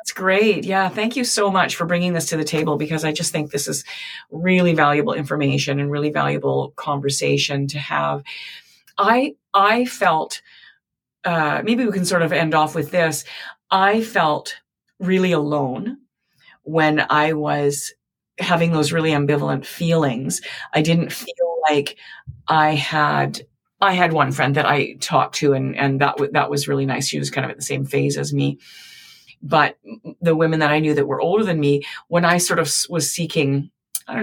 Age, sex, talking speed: 40-59, female, 180 wpm